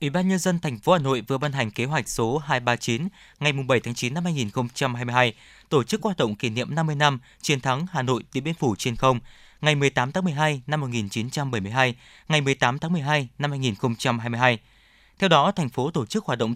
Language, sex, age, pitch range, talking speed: Vietnamese, male, 20-39, 125-165 Hz, 210 wpm